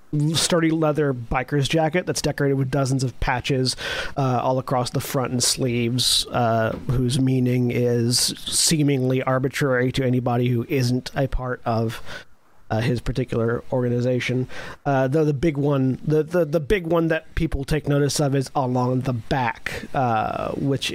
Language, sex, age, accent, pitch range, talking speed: English, male, 40-59, American, 125-160 Hz, 160 wpm